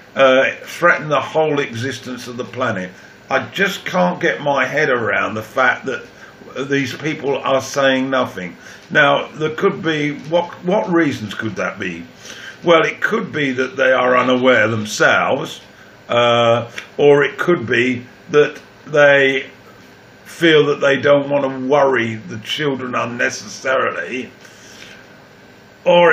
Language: English